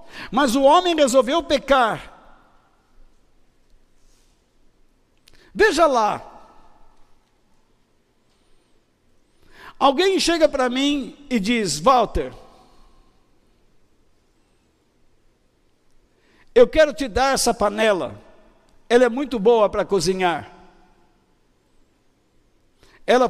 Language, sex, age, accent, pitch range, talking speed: Portuguese, male, 60-79, Brazilian, 240-320 Hz, 70 wpm